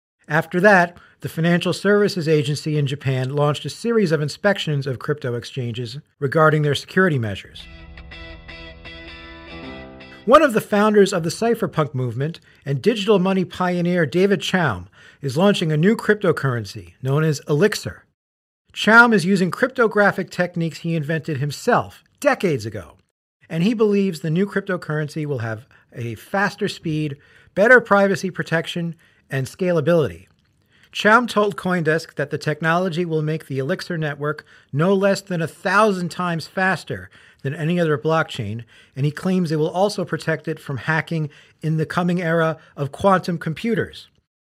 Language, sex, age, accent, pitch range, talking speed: English, male, 50-69, American, 140-185 Hz, 145 wpm